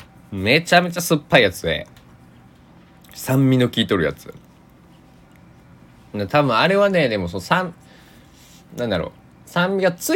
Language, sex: Japanese, male